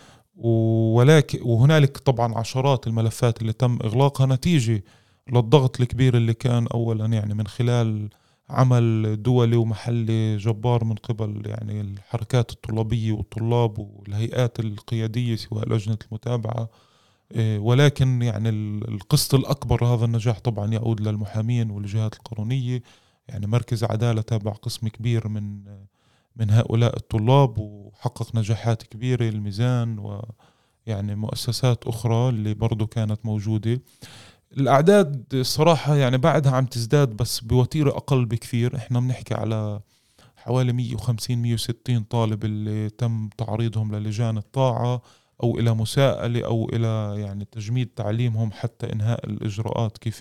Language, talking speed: Arabic, 115 wpm